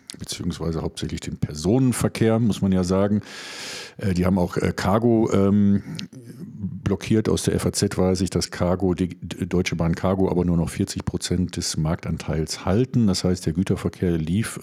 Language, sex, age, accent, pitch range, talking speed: German, male, 50-69, German, 90-105 Hz, 150 wpm